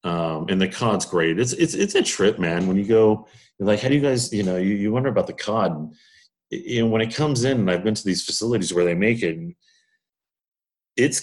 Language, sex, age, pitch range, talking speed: English, male, 40-59, 80-110 Hz, 250 wpm